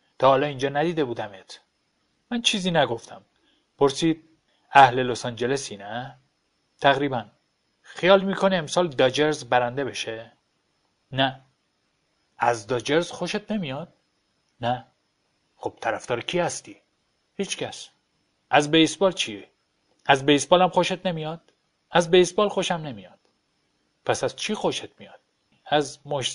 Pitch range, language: 130-170 Hz, Persian